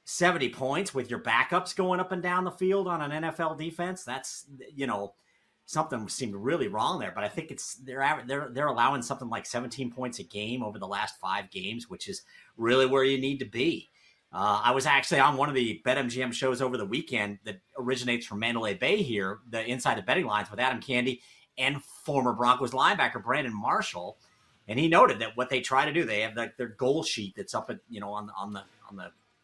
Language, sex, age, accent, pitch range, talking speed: English, male, 40-59, American, 110-135 Hz, 225 wpm